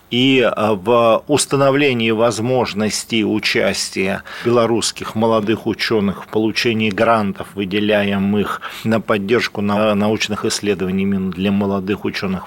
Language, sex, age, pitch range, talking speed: Russian, male, 40-59, 100-120 Hz, 90 wpm